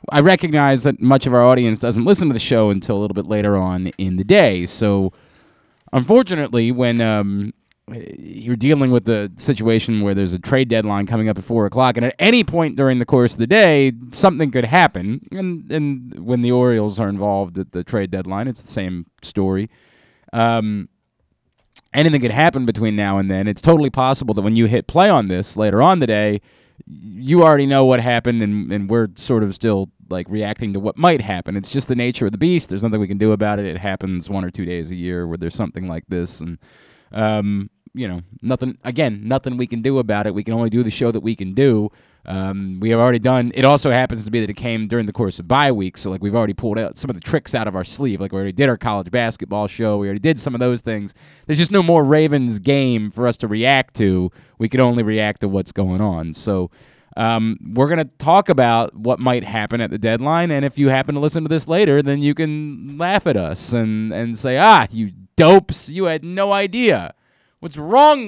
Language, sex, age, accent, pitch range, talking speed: English, male, 30-49, American, 105-135 Hz, 230 wpm